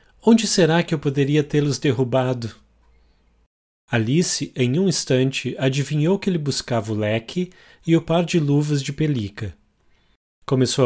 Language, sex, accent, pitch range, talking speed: English, male, Brazilian, 115-165 Hz, 140 wpm